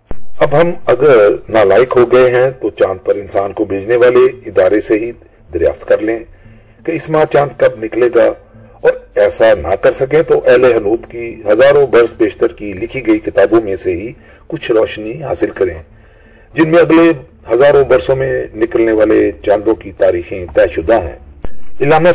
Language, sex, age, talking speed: Urdu, male, 40-59, 175 wpm